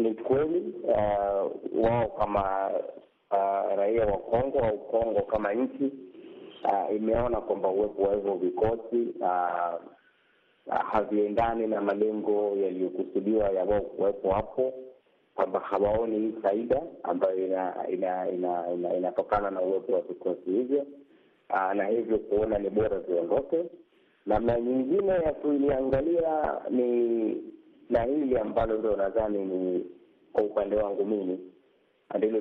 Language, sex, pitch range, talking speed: Swahili, male, 95-115 Hz, 125 wpm